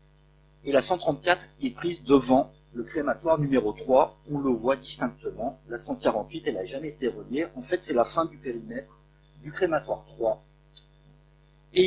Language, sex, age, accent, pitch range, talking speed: French, male, 50-69, French, 150-185 Hz, 160 wpm